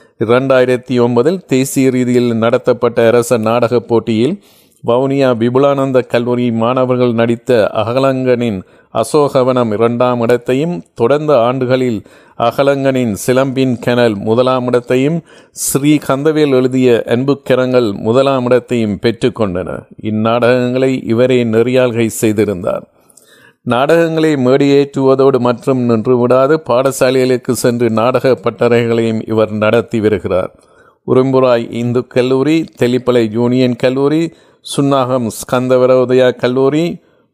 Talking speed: 95 wpm